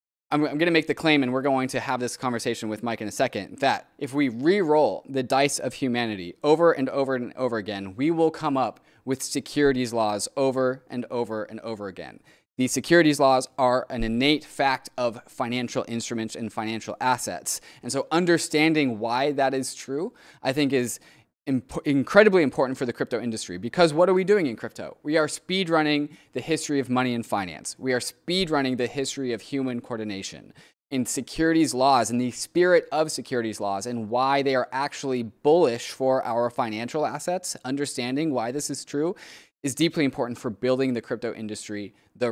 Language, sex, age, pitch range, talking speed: English, male, 20-39, 115-145 Hz, 190 wpm